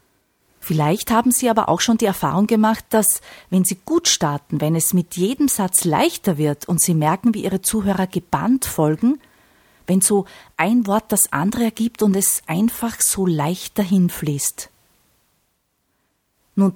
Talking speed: 160 wpm